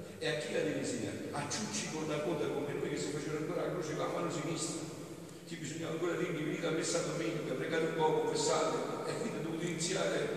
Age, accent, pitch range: 60-79, native, 110-160 Hz